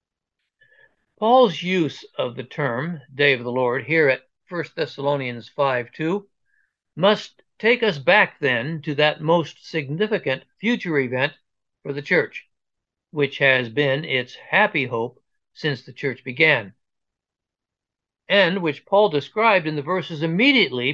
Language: English